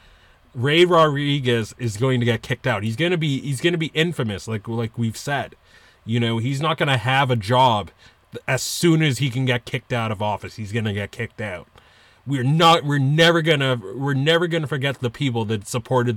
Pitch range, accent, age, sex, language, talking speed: 110-135 Hz, American, 30-49, male, English, 225 wpm